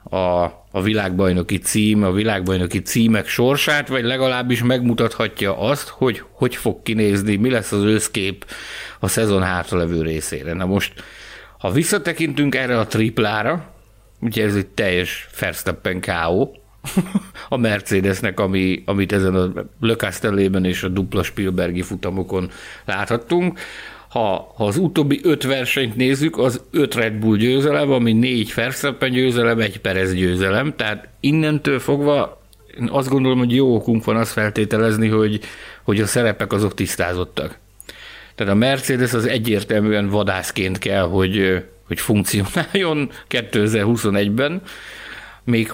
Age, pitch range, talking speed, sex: 60-79, 95-125 Hz, 130 wpm, male